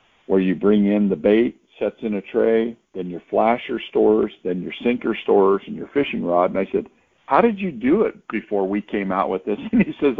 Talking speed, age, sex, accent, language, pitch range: 230 wpm, 50-69, male, American, English, 90-115 Hz